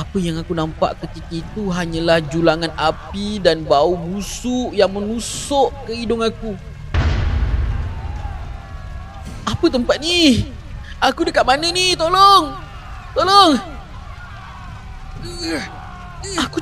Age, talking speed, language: 30-49, 100 wpm, Malay